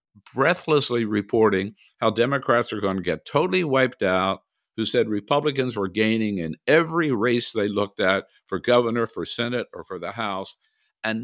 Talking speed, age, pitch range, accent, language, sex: 165 wpm, 60-79, 95-125 Hz, American, English, male